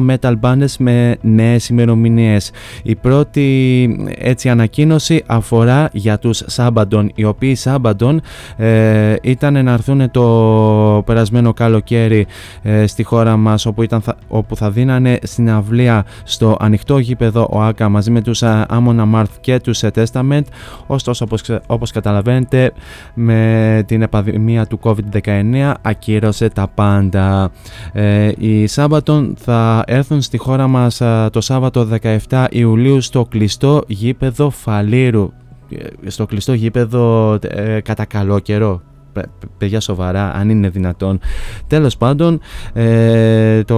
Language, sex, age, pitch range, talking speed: Greek, male, 20-39, 105-120 Hz, 120 wpm